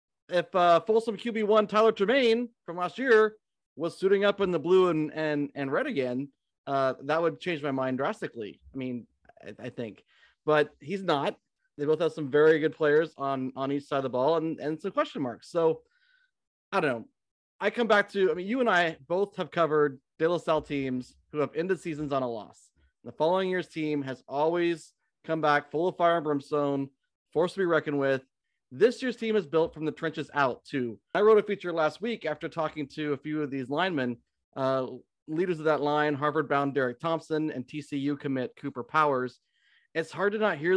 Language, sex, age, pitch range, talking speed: English, male, 30-49, 140-180 Hz, 210 wpm